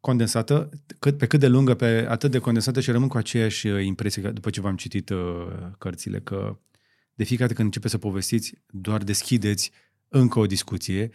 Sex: male